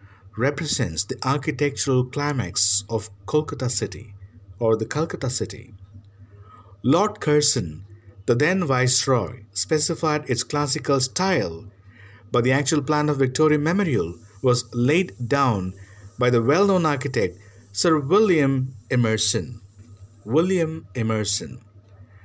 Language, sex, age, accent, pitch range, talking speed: English, male, 50-69, Indian, 100-135 Hz, 110 wpm